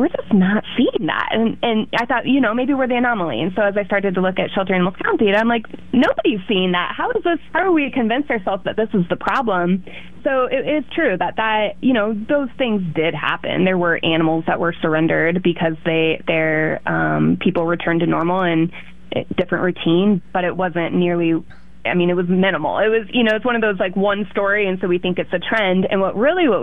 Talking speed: 235 wpm